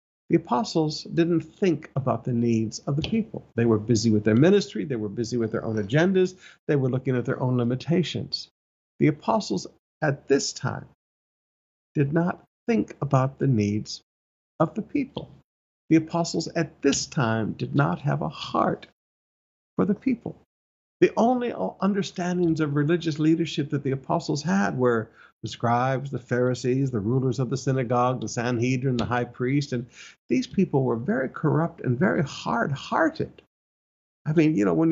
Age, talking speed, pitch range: 50-69, 165 wpm, 125-170 Hz